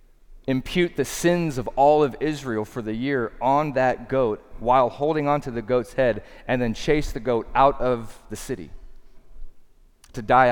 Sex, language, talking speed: male, English, 175 wpm